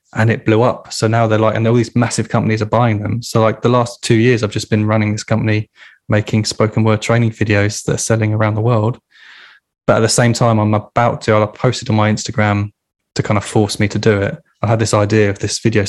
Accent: British